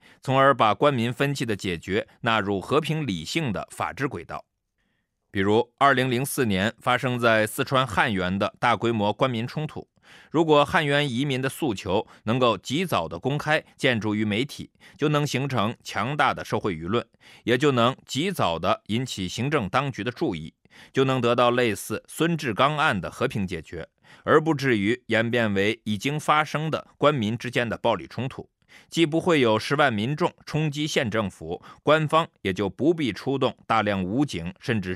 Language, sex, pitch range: Chinese, male, 105-145 Hz